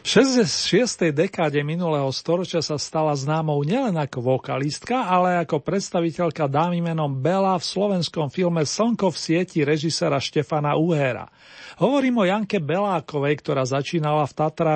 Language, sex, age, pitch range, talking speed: Slovak, male, 40-59, 150-185 Hz, 140 wpm